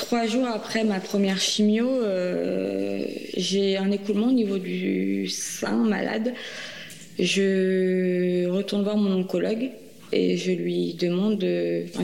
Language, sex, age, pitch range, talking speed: French, female, 20-39, 180-205 Hz, 125 wpm